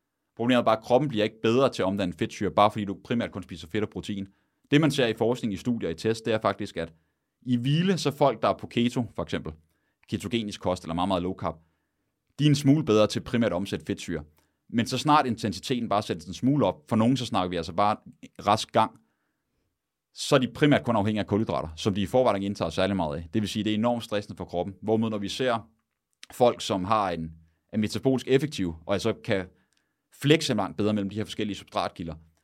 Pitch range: 95-120 Hz